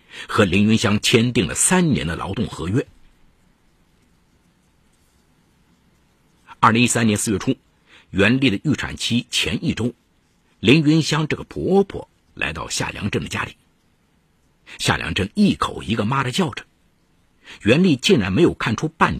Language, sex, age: Chinese, male, 50-69